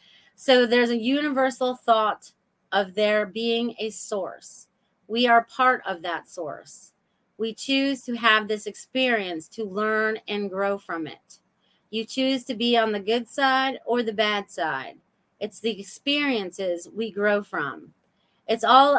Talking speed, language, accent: 150 wpm, English, American